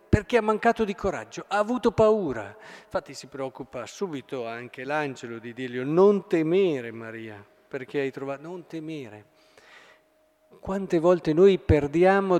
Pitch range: 140-205 Hz